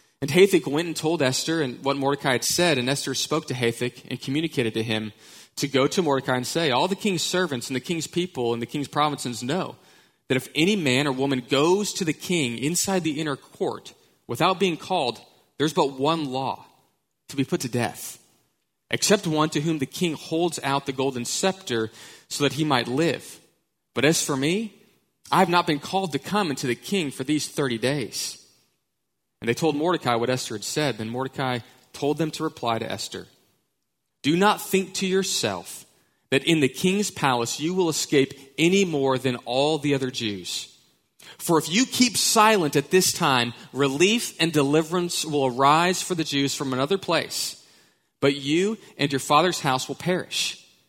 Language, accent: English, American